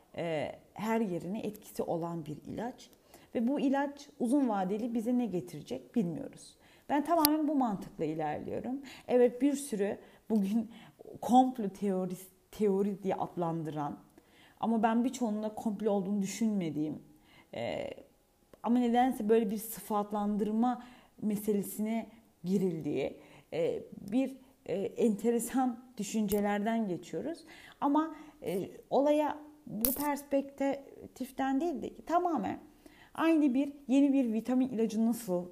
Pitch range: 195-270 Hz